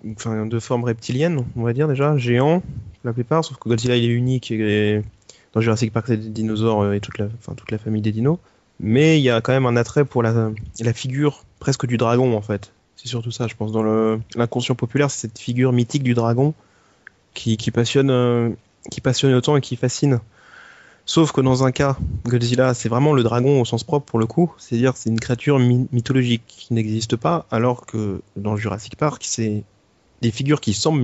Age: 20-39